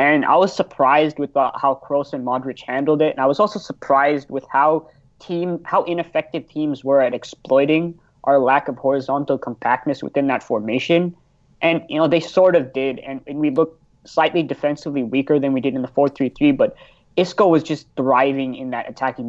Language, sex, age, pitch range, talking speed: English, male, 20-39, 130-150 Hz, 200 wpm